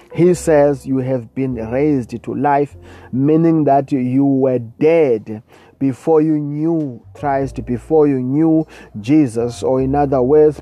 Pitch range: 125-155 Hz